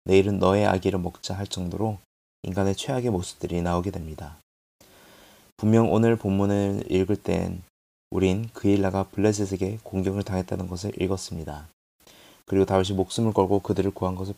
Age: 30-49